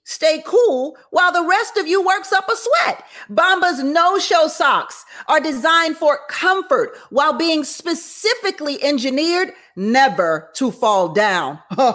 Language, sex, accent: English, female, American